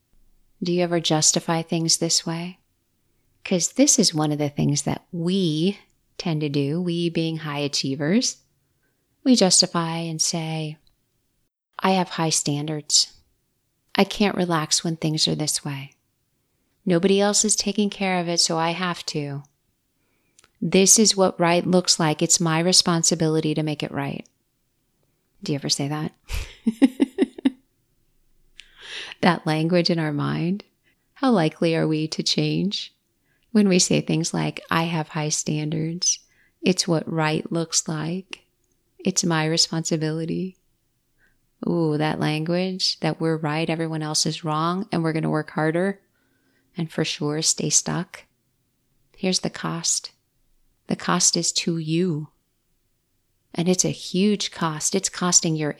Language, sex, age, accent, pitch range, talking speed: English, female, 30-49, American, 150-180 Hz, 145 wpm